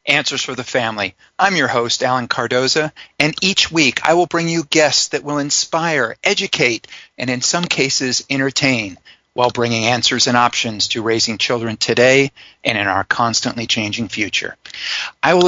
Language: English